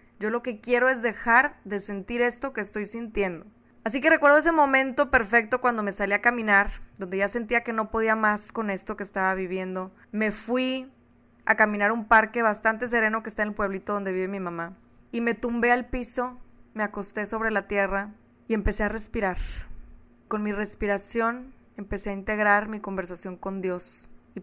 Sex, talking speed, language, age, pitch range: female, 190 wpm, Spanish, 20-39, 200-235 Hz